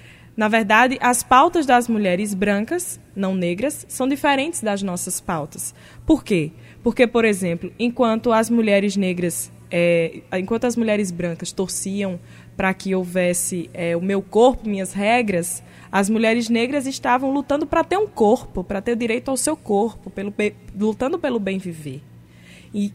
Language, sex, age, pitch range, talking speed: Portuguese, female, 20-39, 195-270 Hz, 155 wpm